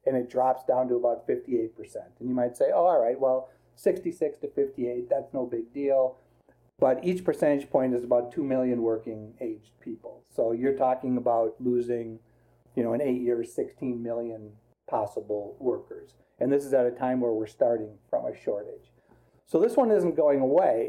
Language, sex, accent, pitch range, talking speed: English, male, American, 120-140 Hz, 185 wpm